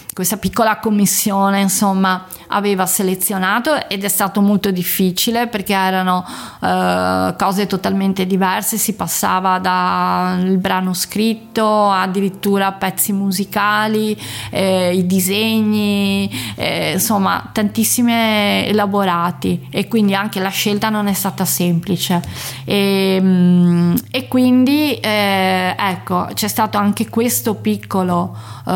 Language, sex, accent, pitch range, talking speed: Italian, female, native, 185-215 Hz, 105 wpm